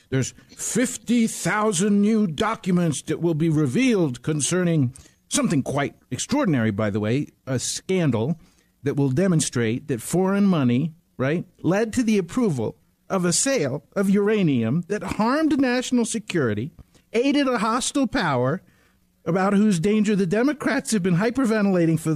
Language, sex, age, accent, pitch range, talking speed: English, male, 50-69, American, 145-220 Hz, 135 wpm